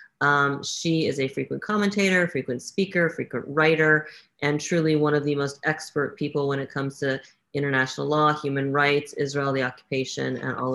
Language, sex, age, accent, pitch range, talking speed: English, female, 30-49, American, 135-155 Hz, 175 wpm